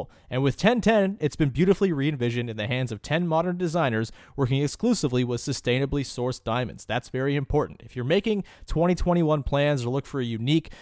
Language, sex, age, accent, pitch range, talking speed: English, male, 30-49, American, 120-165 Hz, 190 wpm